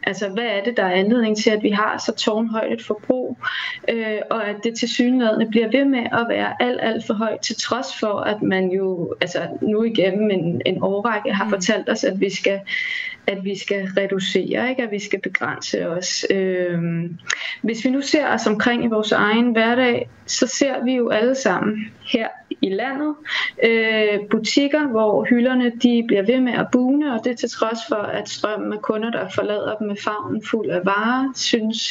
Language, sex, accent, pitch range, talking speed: Danish, female, native, 210-250 Hz, 195 wpm